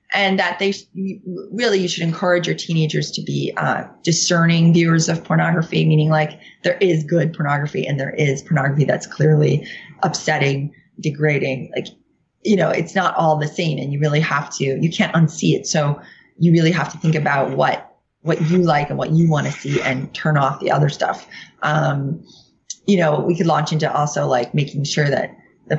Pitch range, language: 145-175 Hz, English